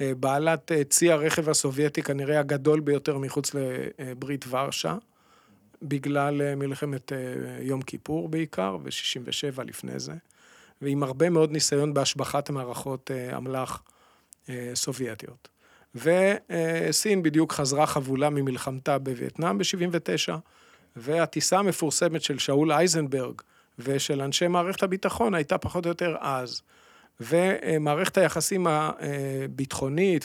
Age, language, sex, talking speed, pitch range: 50-69, Hebrew, male, 105 wpm, 135-160 Hz